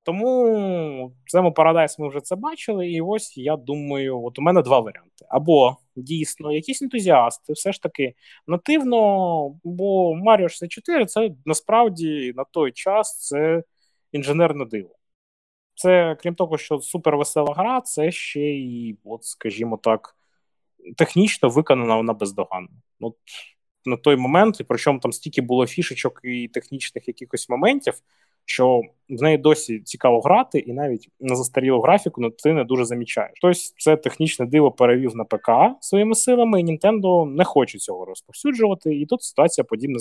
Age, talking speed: 20-39, 150 wpm